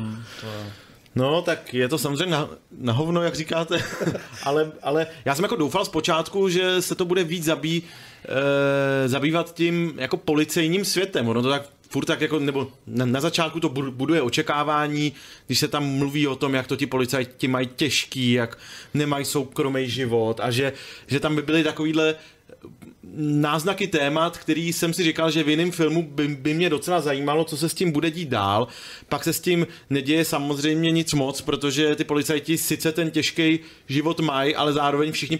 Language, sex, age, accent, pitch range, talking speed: Czech, male, 30-49, native, 140-160 Hz, 175 wpm